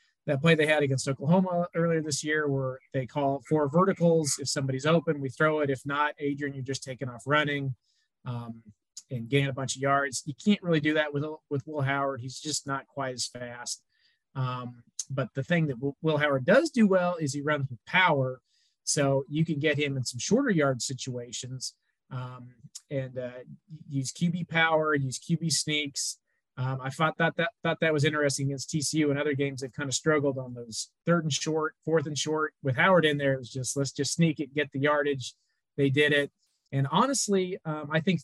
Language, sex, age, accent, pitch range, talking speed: English, male, 30-49, American, 135-160 Hz, 205 wpm